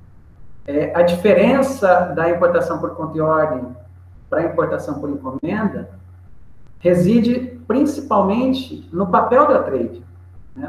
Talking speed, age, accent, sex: 120 wpm, 50-69, Brazilian, male